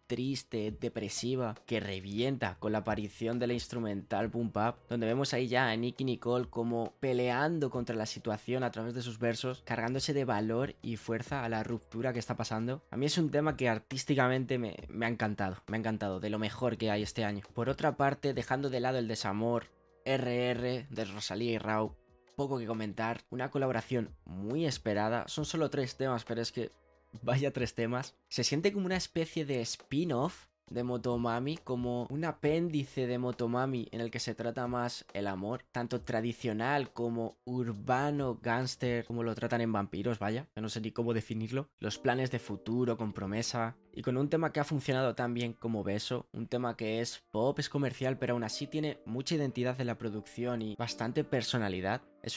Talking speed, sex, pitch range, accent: 190 wpm, male, 110-130 Hz, Spanish